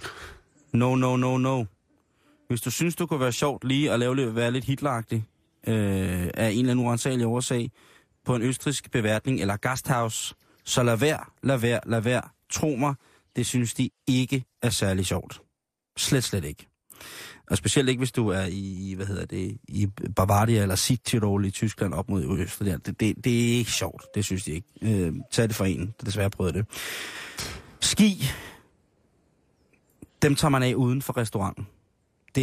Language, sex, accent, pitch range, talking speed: Danish, male, native, 105-130 Hz, 170 wpm